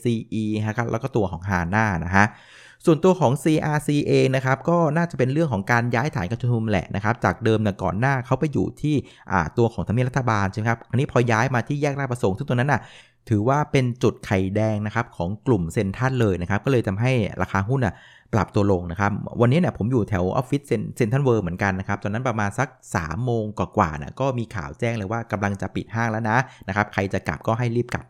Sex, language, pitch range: male, Thai, 105-130 Hz